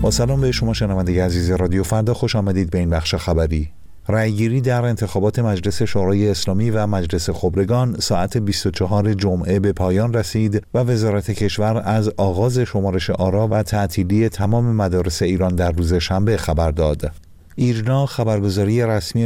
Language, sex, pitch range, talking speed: Persian, male, 95-115 Hz, 155 wpm